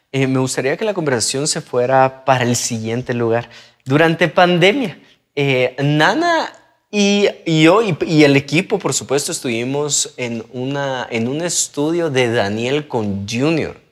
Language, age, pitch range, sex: Spanish, 20-39, 120-165 Hz, male